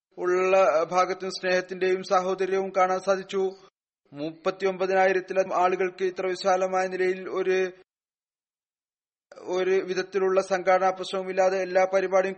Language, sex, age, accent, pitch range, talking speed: Malayalam, male, 30-49, native, 185-190 Hz, 80 wpm